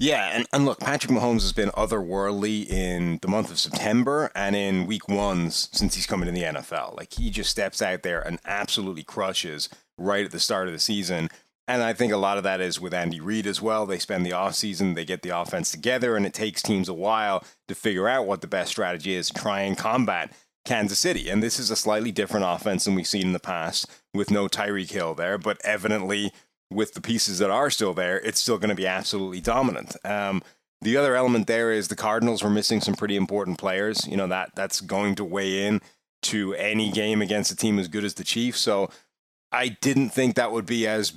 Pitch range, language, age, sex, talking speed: 95-110 Hz, English, 30-49, male, 230 wpm